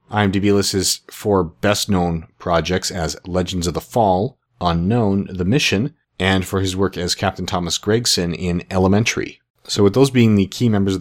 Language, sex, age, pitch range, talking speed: English, male, 40-59, 85-100 Hz, 180 wpm